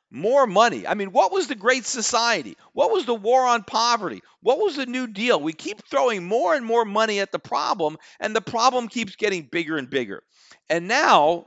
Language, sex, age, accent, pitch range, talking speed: English, male, 50-69, American, 165-230 Hz, 210 wpm